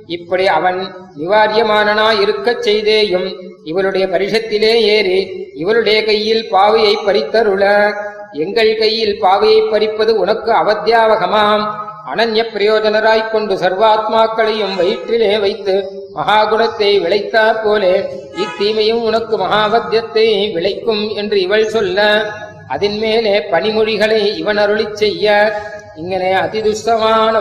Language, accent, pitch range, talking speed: Tamil, native, 200-220 Hz, 50 wpm